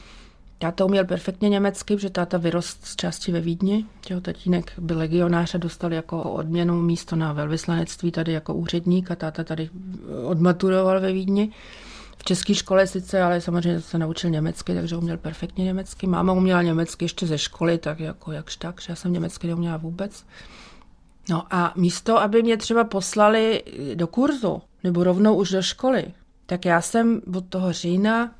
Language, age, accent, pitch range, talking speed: Czech, 40-59, native, 170-195 Hz, 170 wpm